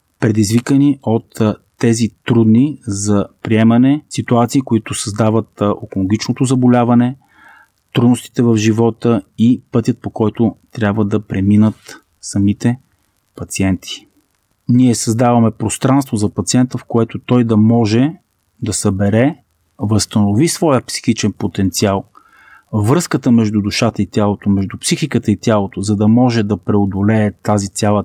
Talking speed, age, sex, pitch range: 120 wpm, 30-49, male, 105-125 Hz